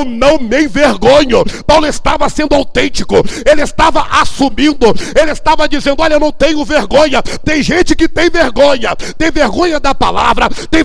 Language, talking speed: Portuguese, 160 wpm